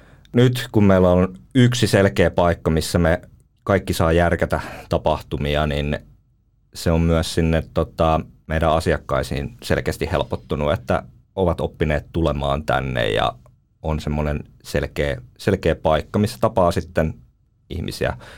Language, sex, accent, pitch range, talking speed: Finnish, male, native, 75-95 Hz, 120 wpm